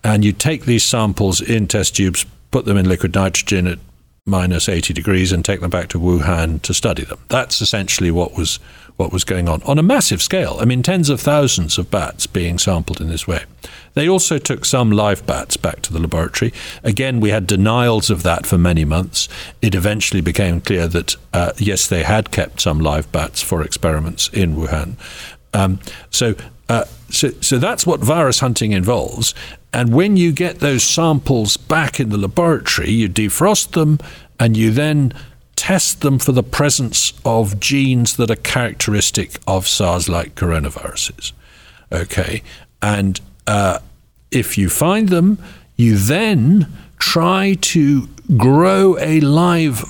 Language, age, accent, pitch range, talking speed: English, 50-69, British, 90-135 Hz, 170 wpm